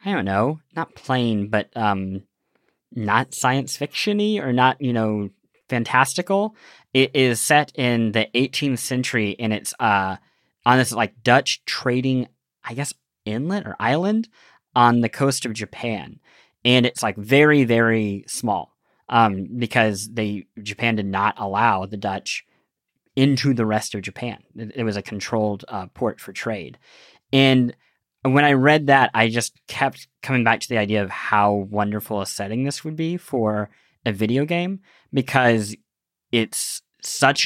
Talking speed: 155 wpm